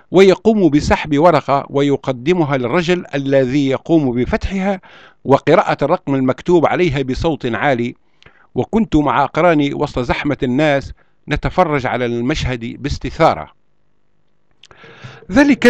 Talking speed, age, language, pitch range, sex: 95 wpm, 50-69, Arabic, 125-175 Hz, male